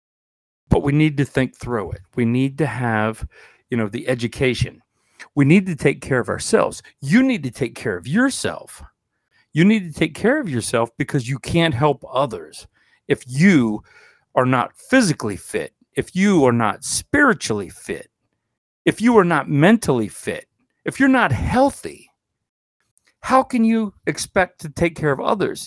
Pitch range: 125-200 Hz